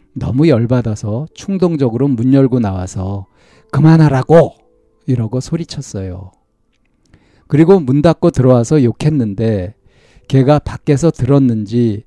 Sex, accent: male, native